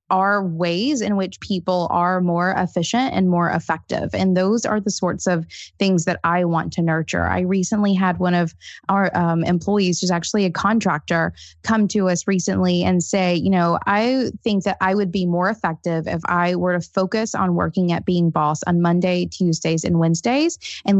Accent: American